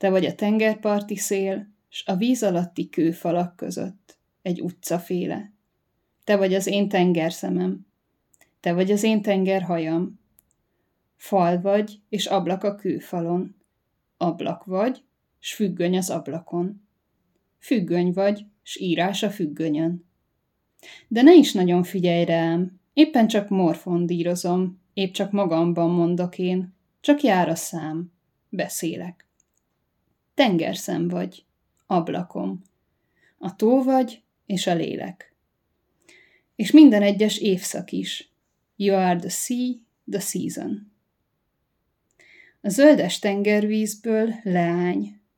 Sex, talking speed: female, 115 wpm